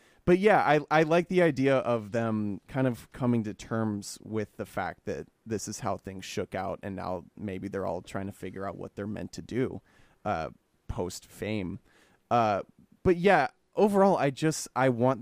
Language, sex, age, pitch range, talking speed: English, male, 20-39, 105-135 Hz, 195 wpm